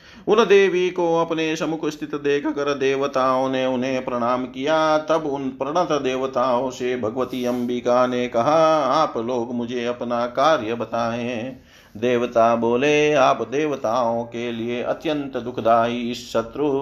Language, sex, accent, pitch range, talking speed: Hindi, male, native, 115-140 Hz, 130 wpm